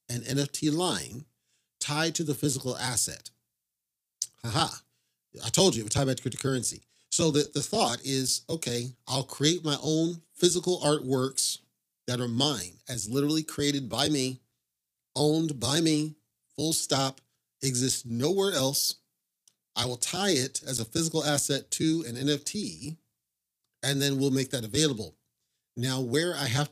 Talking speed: 150 wpm